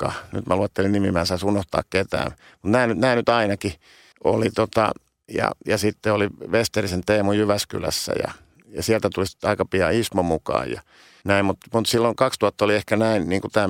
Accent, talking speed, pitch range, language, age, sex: native, 170 wpm, 95-110 Hz, Finnish, 50-69, male